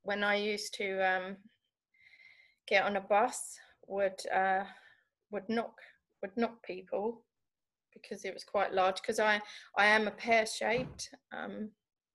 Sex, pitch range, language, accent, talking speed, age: female, 190-235 Hz, English, British, 140 wpm, 20-39